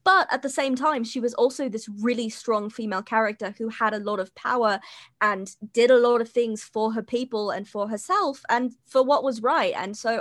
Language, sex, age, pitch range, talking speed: English, female, 20-39, 210-260 Hz, 225 wpm